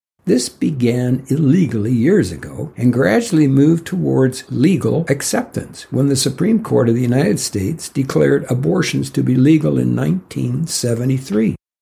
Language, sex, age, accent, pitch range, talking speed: English, male, 60-79, American, 110-145 Hz, 130 wpm